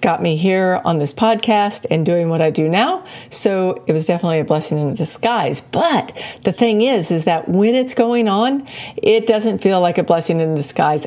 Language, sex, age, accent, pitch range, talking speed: English, female, 50-69, American, 175-230 Hz, 205 wpm